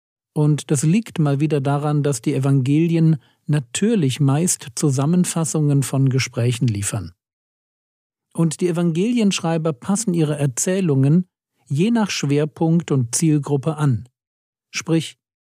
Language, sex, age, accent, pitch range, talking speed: German, male, 50-69, German, 130-165 Hz, 110 wpm